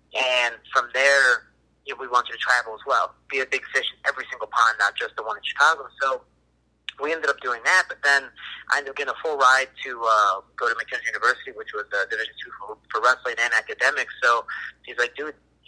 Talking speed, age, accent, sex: 225 wpm, 30-49, American, male